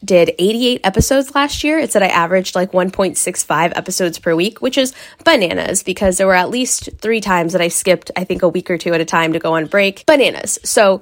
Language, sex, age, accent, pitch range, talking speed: English, female, 10-29, American, 175-225 Hz, 230 wpm